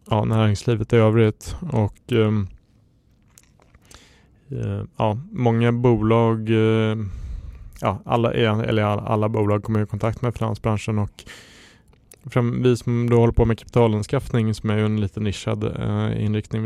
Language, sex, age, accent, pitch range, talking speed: Swedish, male, 20-39, Norwegian, 100-115 Hz, 135 wpm